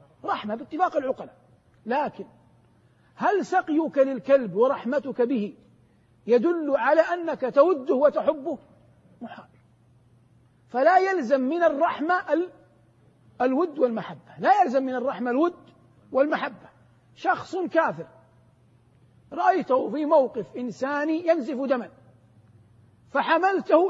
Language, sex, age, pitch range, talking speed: Arabic, male, 50-69, 230-315 Hz, 90 wpm